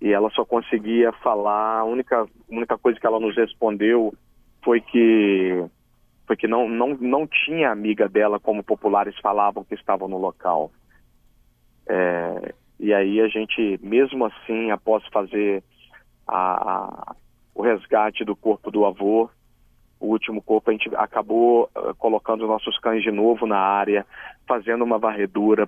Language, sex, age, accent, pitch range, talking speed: Portuguese, male, 40-59, Brazilian, 105-115 Hz, 135 wpm